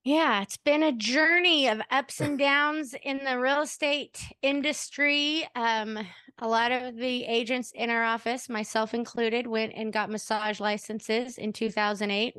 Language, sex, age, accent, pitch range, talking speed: English, female, 20-39, American, 200-240 Hz, 155 wpm